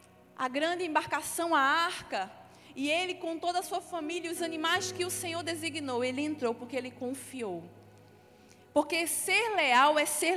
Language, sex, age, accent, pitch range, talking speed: Portuguese, female, 20-39, Brazilian, 255-335 Hz, 170 wpm